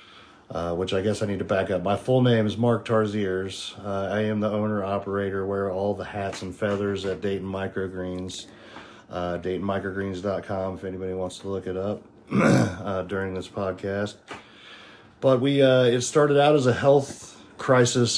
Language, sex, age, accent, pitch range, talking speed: English, male, 40-59, American, 95-115 Hz, 170 wpm